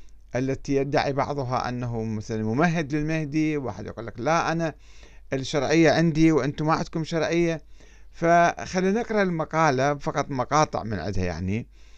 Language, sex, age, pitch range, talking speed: Arabic, male, 50-69, 105-165 Hz, 125 wpm